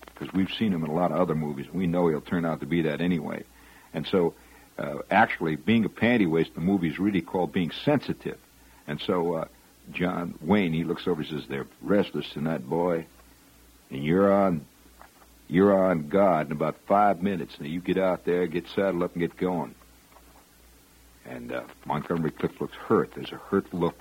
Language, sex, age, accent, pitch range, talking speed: English, male, 60-79, American, 75-100 Hz, 195 wpm